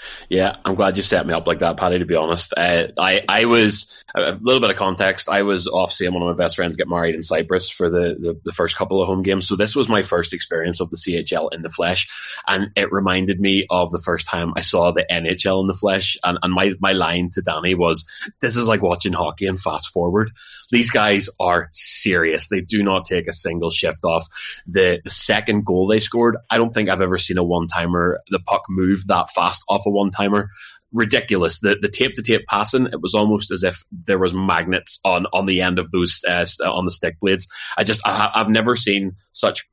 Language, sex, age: English, male, 20-39